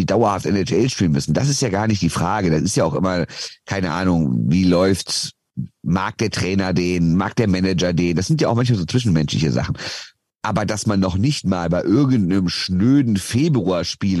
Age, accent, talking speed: 50-69, German, 200 wpm